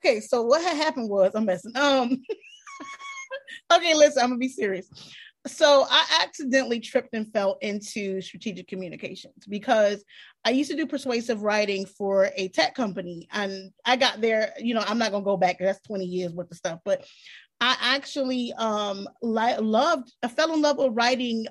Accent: American